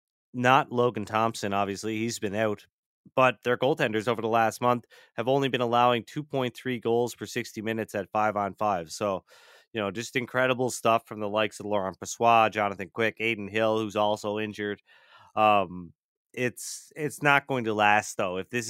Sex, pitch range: male, 100-120 Hz